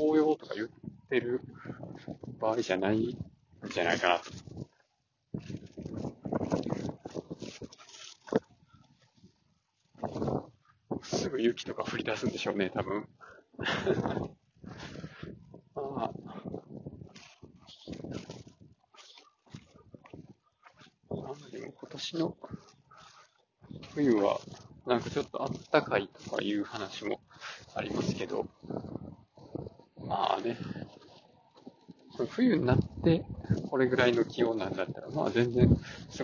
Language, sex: Japanese, male